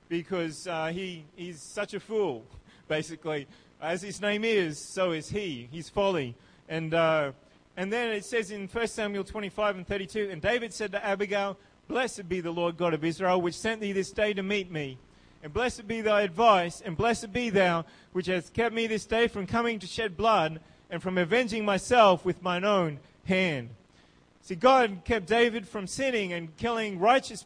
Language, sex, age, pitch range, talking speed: English, male, 30-49, 170-215 Hz, 190 wpm